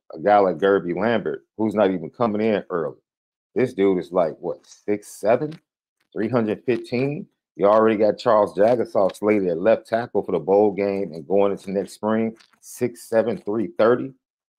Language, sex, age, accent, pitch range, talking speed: English, male, 40-59, American, 90-110 Hz, 155 wpm